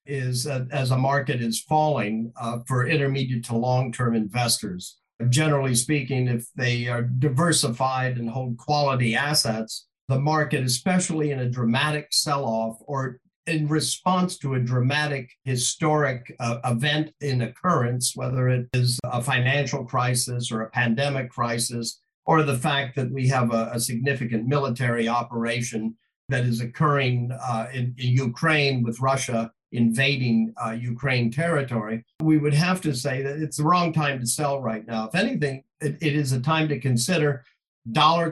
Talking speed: 155 wpm